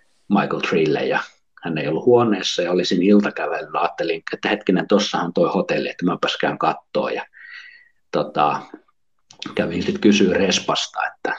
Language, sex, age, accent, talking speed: Finnish, male, 50-69, native, 140 wpm